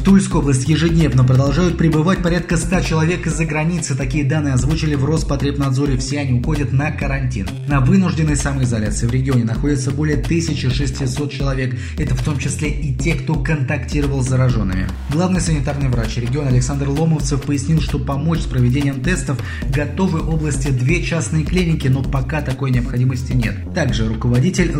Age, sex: 20-39, male